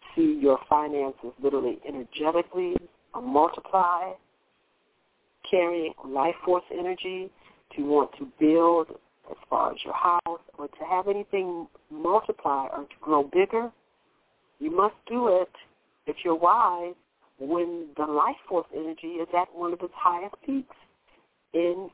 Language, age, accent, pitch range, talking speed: English, 50-69, American, 150-195 Hz, 130 wpm